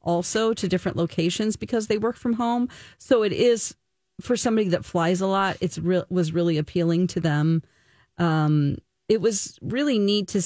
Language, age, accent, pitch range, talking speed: English, 40-59, American, 170-220 Hz, 180 wpm